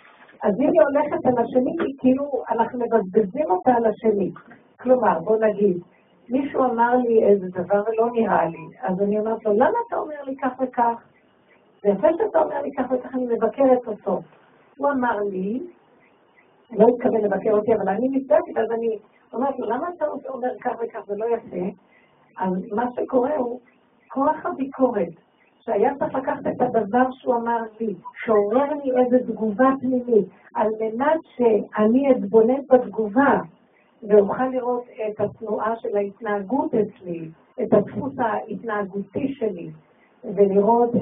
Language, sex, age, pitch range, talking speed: Hebrew, female, 50-69, 215-260 Hz, 145 wpm